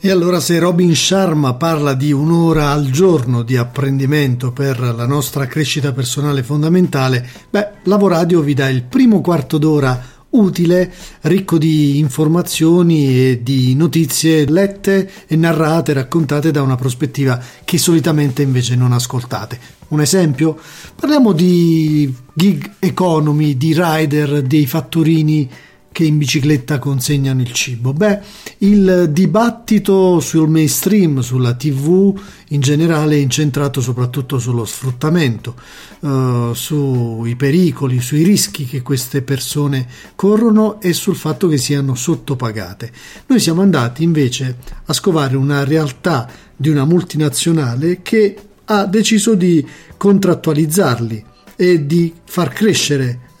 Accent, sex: native, male